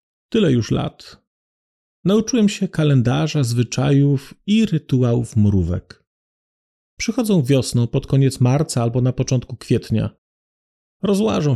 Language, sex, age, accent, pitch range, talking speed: Polish, male, 40-59, native, 125-160 Hz, 105 wpm